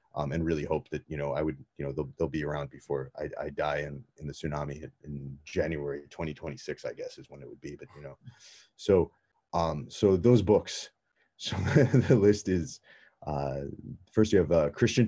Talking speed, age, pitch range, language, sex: 205 wpm, 30-49, 75-90 Hz, English, male